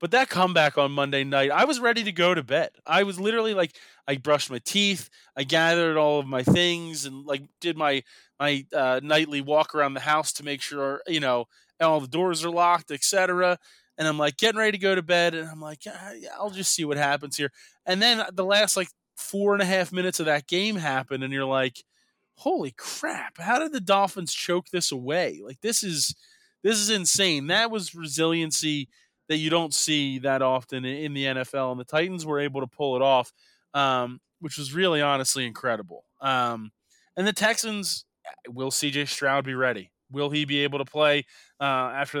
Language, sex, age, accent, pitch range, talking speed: English, male, 20-39, American, 140-175 Hz, 205 wpm